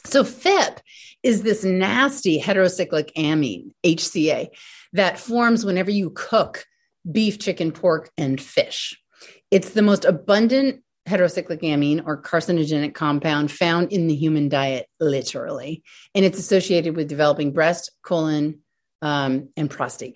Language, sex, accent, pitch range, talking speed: English, female, American, 165-235 Hz, 130 wpm